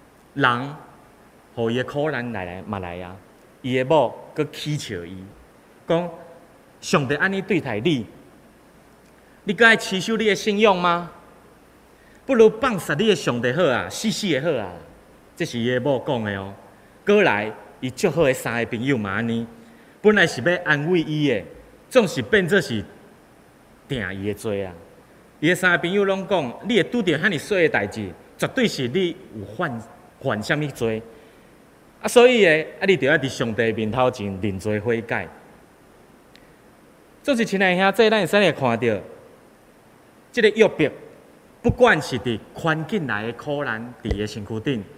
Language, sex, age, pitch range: Chinese, male, 30-49, 115-185 Hz